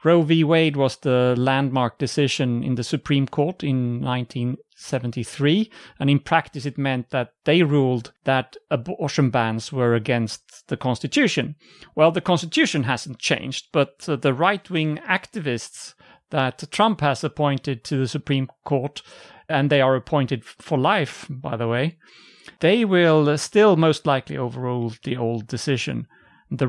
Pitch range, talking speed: 130-175 Hz, 145 wpm